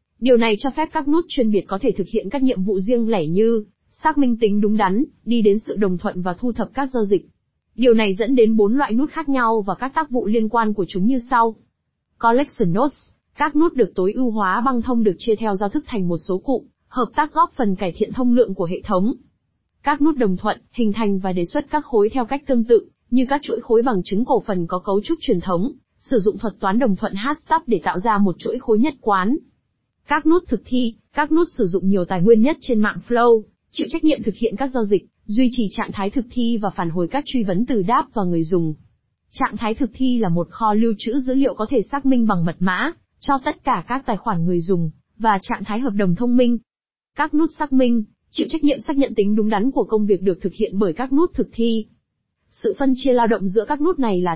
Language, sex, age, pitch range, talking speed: Vietnamese, female, 20-39, 205-265 Hz, 255 wpm